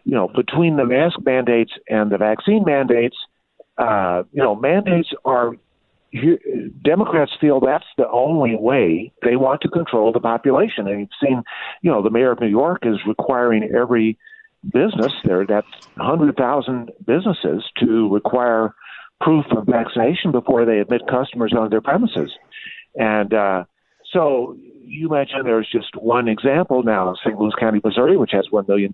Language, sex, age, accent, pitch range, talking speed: English, male, 50-69, American, 115-170 Hz, 155 wpm